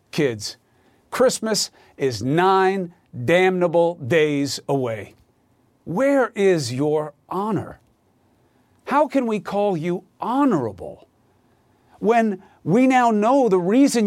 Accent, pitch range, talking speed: American, 135-215 Hz, 100 wpm